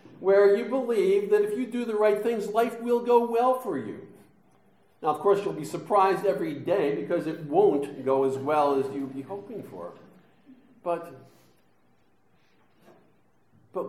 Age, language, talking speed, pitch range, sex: 50-69, English, 160 wpm, 130-210 Hz, male